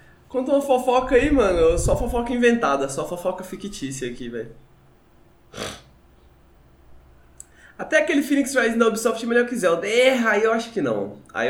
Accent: Brazilian